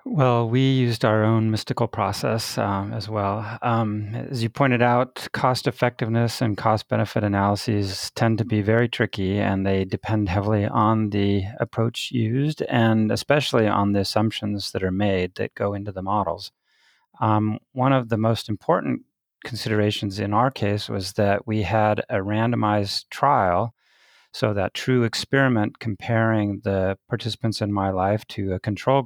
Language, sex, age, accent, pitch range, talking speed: English, male, 30-49, American, 100-120 Hz, 155 wpm